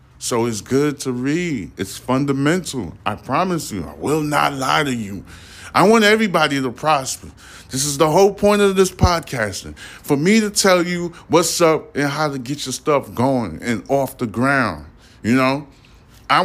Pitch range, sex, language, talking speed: 105-155 Hz, male, English, 180 wpm